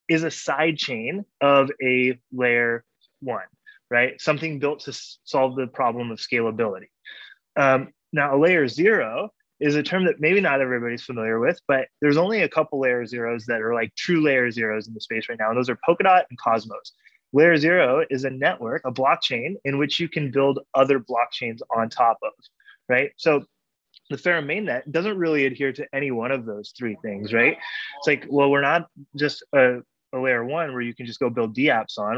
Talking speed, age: 200 wpm, 20-39